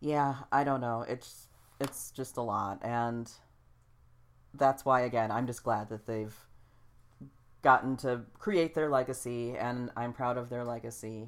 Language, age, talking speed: English, 40-59, 155 wpm